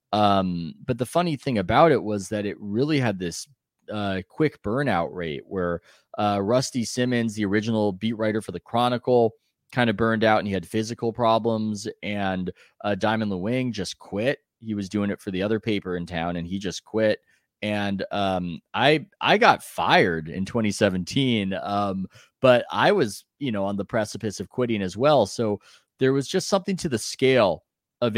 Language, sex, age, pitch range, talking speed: English, male, 20-39, 95-120 Hz, 185 wpm